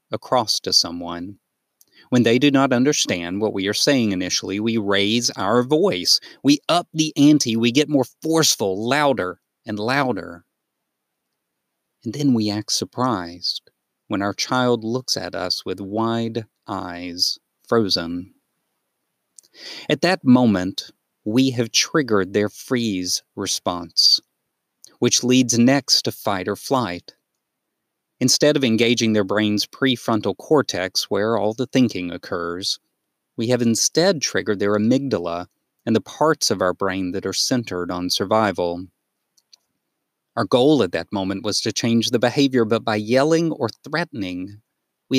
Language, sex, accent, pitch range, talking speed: English, male, American, 95-130 Hz, 140 wpm